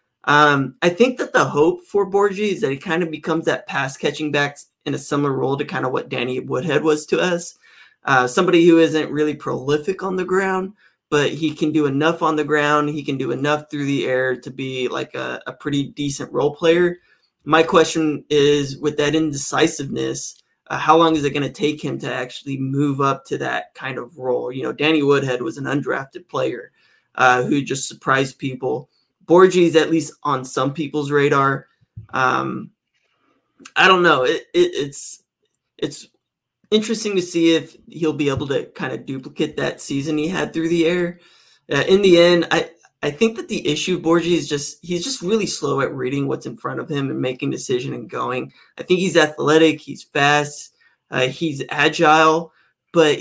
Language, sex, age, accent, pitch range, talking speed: English, male, 20-39, American, 140-170 Hz, 195 wpm